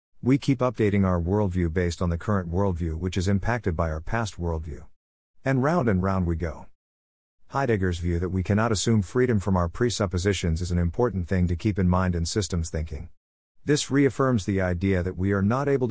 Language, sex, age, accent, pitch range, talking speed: English, male, 50-69, American, 85-110 Hz, 200 wpm